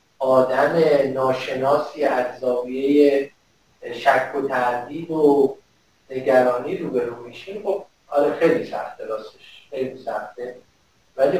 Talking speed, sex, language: 105 wpm, male, Persian